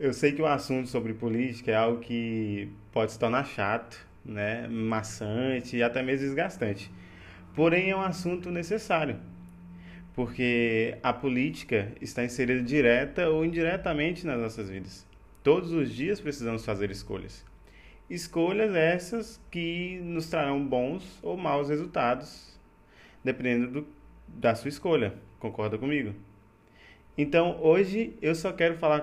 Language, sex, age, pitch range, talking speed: Portuguese, male, 20-39, 110-155 Hz, 130 wpm